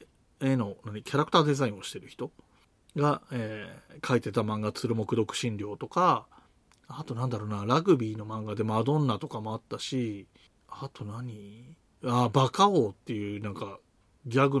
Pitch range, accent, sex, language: 110-150 Hz, native, male, Japanese